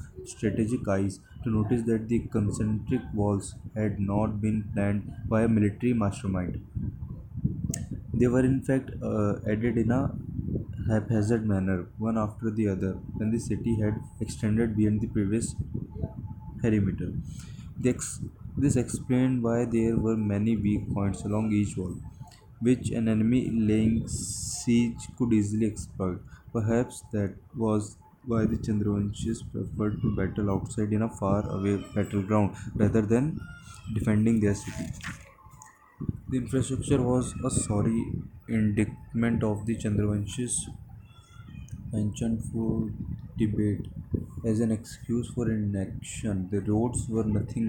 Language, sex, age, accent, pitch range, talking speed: English, male, 20-39, Indian, 100-115 Hz, 125 wpm